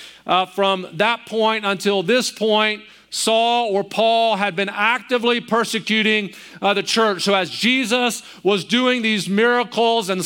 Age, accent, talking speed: 40-59, American, 145 wpm